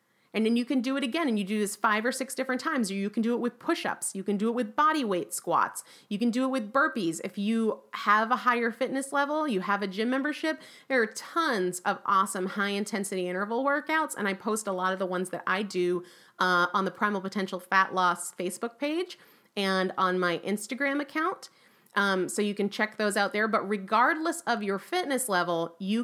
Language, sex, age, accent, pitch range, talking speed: English, female, 30-49, American, 195-255 Hz, 225 wpm